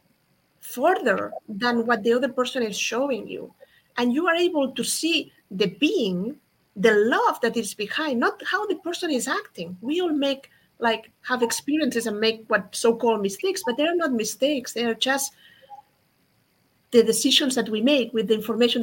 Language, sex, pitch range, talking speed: English, female, 215-290 Hz, 170 wpm